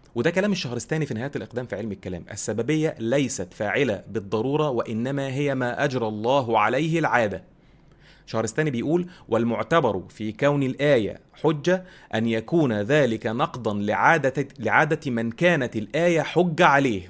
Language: Arabic